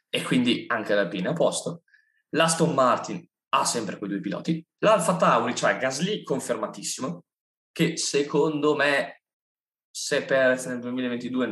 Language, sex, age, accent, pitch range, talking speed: Italian, male, 20-39, native, 105-160 Hz, 135 wpm